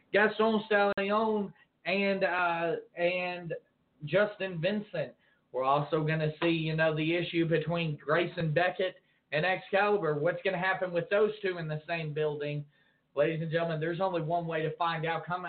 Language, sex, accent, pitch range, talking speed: English, male, American, 165-200 Hz, 165 wpm